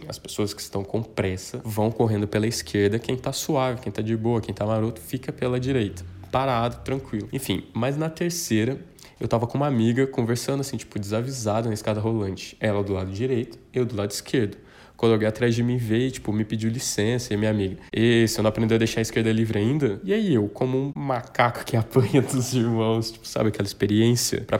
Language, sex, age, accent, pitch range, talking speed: Portuguese, male, 20-39, Brazilian, 105-125 Hz, 210 wpm